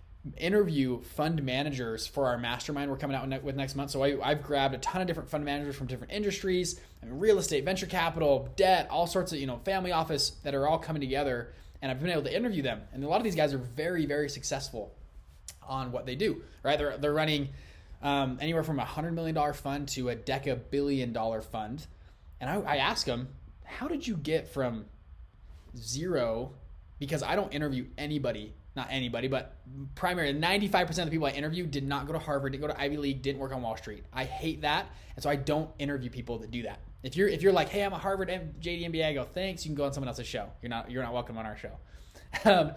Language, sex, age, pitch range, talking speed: English, male, 20-39, 125-160 Hz, 225 wpm